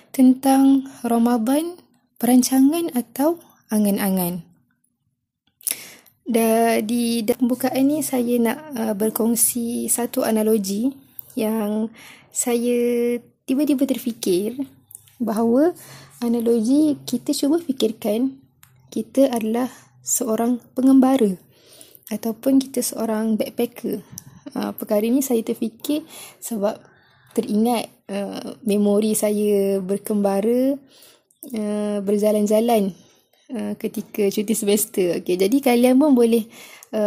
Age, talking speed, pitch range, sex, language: 20-39, 85 wpm, 215-260 Hz, female, Malay